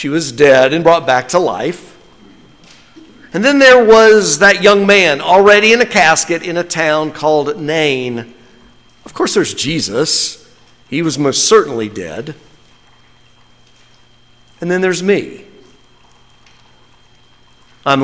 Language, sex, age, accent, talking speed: English, male, 50-69, American, 125 wpm